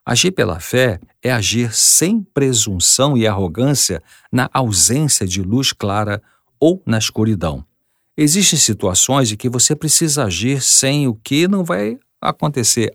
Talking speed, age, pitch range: 140 wpm, 50-69, 95-125 Hz